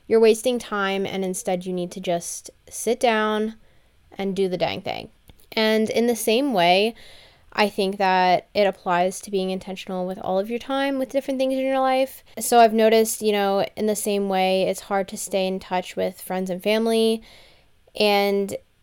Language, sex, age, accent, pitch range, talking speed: English, female, 10-29, American, 190-225 Hz, 190 wpm